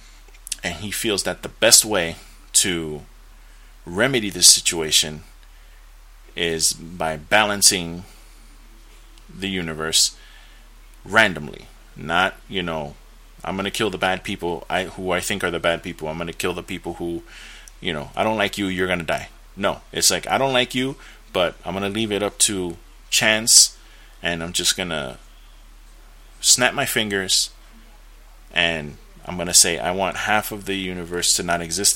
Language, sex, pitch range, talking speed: English, male, 80-105 Hz, 170 wpm